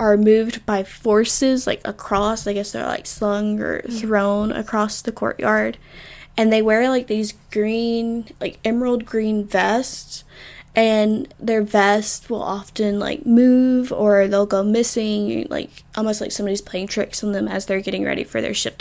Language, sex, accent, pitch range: English, female, American, 210-235 Hz